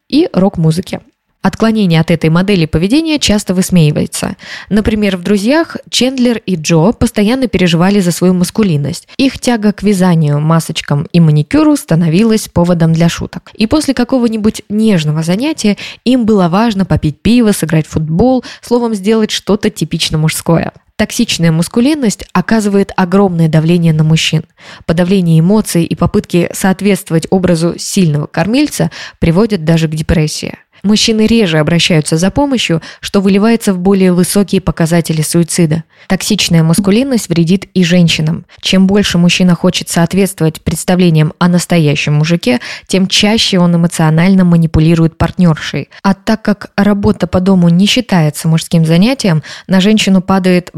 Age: 20-39